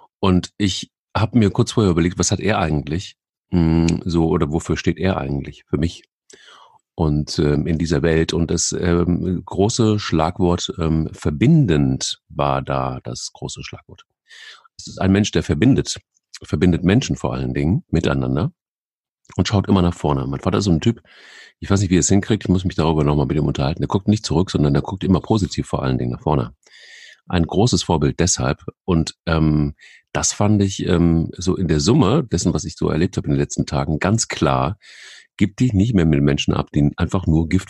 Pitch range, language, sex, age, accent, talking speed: 75-95 Hz, German, male, 40-59, German, 200 wpm